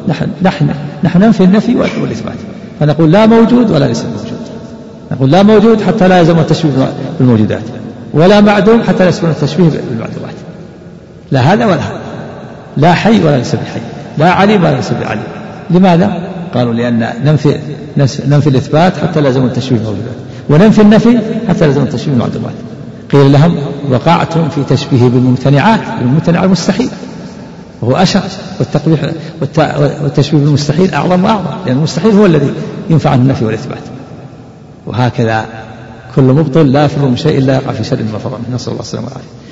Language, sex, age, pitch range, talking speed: Arabic, male, 60-79, 130-175 Hz, 145 wpm